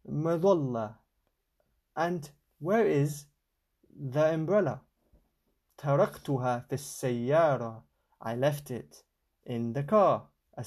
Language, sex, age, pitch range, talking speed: Arabic, male, 20-39, 120-165 Hz, 80 wpm